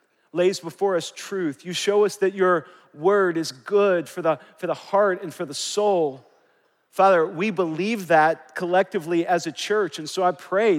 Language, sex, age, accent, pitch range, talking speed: English, male, 40-59, American, 155-195 Hz, 180 wpm